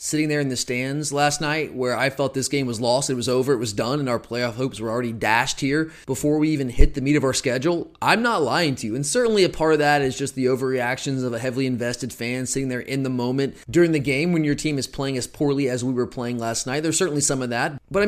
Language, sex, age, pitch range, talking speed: English, male, 30-49, 125-155 Hz, 280 wpm